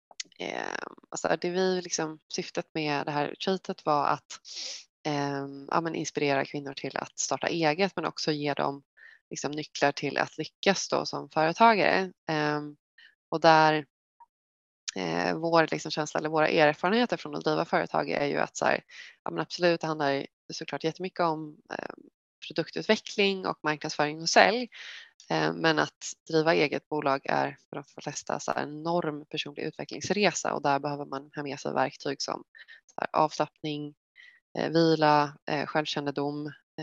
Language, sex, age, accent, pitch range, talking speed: Swedish, female, 20-39, native, 145-165 Hz, 145 wpm